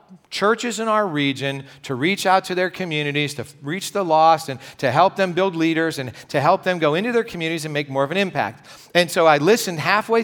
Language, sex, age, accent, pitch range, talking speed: English, male, 40-59, American, 135-170 Hz, 230 wpm